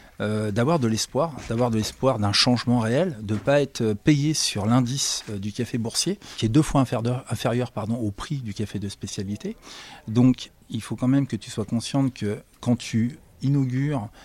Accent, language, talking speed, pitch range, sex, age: French, French, 190 wpm, 105-135 Hz, male, 40-59